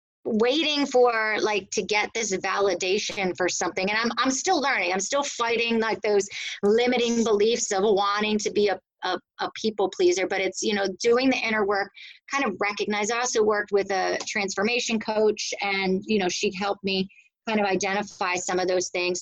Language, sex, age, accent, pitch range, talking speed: English, female, 30-49, American, 190-230 Hz, 190 wpm